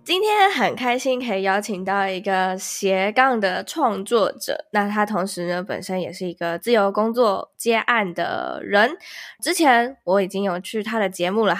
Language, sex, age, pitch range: Chinese, female, 10-29, 185-235 Hz